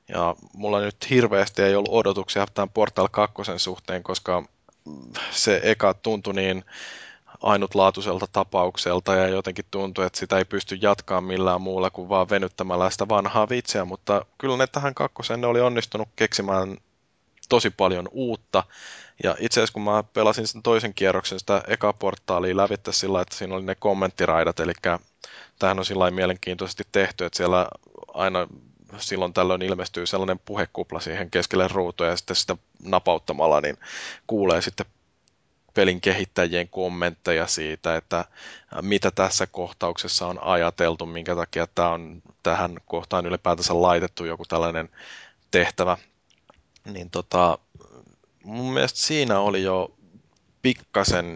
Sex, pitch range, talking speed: male, 90-100 Hz, 135 wpm